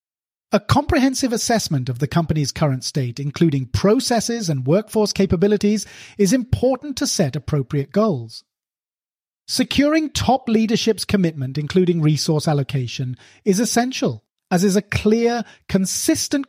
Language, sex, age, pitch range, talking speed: English, male, 30-49, 150-225 Hz, 120 wpm